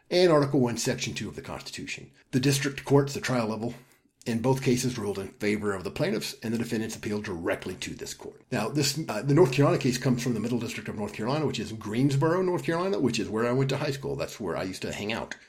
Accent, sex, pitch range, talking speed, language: American, male, 115-140 Hz, 255 wpm, English